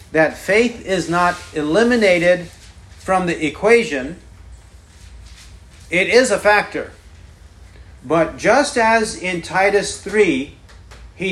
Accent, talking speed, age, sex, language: American, 100 wpm, 40-59, male, English